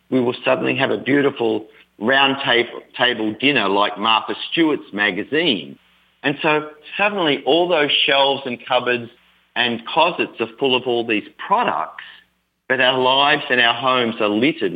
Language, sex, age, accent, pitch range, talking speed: English, male, 40-59, Australian, 105-145 Hz, 155 wpm